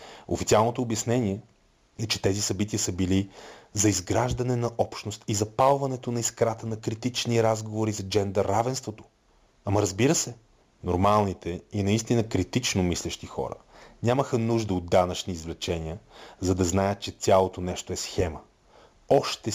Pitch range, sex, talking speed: 95-115 Hz, male, 135 wpm